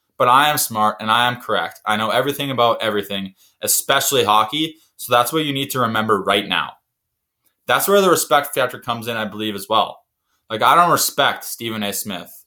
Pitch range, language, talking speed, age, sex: 110-135 Hz, English, 200 wpm, 20-39, male